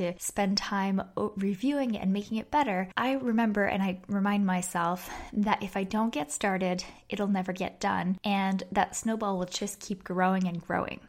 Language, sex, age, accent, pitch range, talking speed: English, female, 10-29, American, 185-220 Hz, 180 wpm